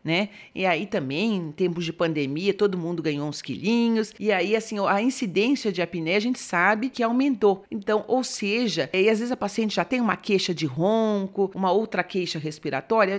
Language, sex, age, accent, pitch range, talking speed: Portuguese, female, 40-59, Brazilian, 165-215 Hz, 195 wpm